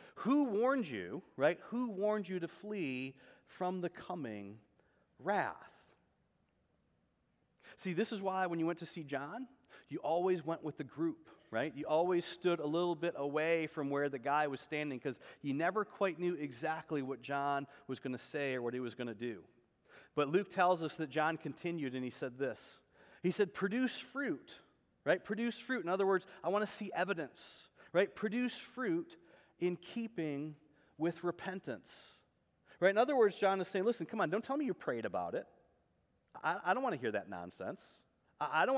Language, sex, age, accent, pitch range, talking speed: English, male, 30-49, American, 150-195 Hz, 190 wpm